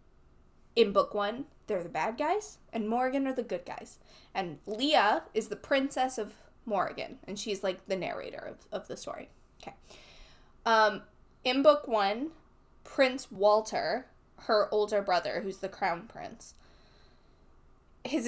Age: 10-29